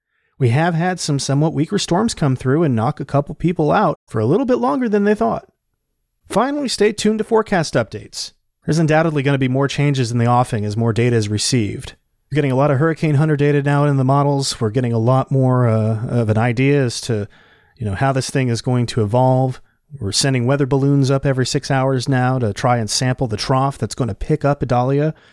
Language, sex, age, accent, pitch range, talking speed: English, male, 30-49, American, 115-150 Hz, 230 wpm